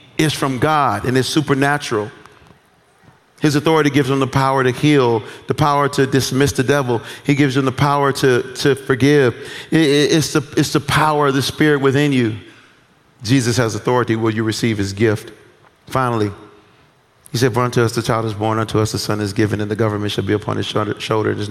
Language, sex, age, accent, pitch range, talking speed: English, male, 40-59, American, 105-135 Hz, 205 wpm